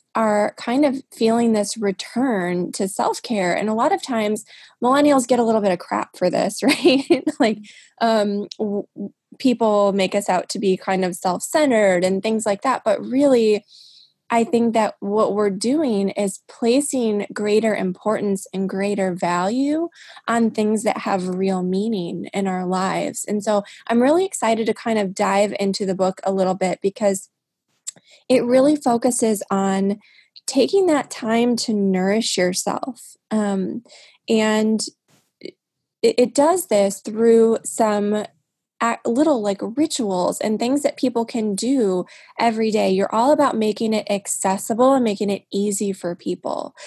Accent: American